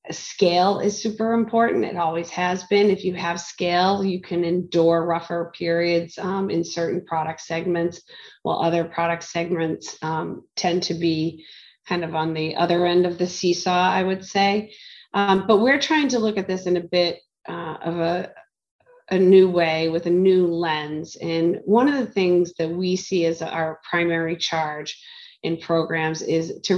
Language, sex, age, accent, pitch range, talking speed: English, female, 30-49, American, 165-185 Hz, 180 wpm